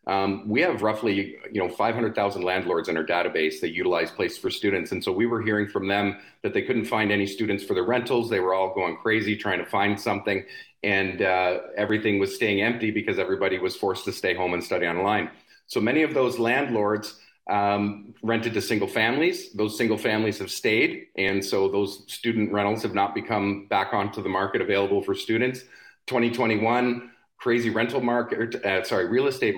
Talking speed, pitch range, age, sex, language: 195 wpm, 100-120 Hz, 40-59, male, English